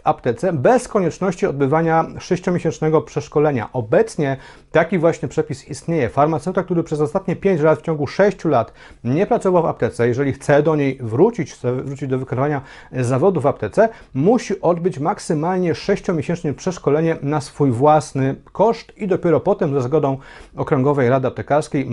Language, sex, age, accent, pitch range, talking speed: Polish, male, 40-59, native, 140-185 Hz, 150 wpm